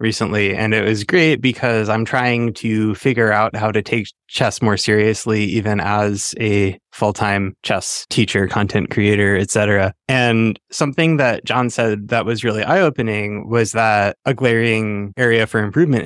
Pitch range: 105-115 Hz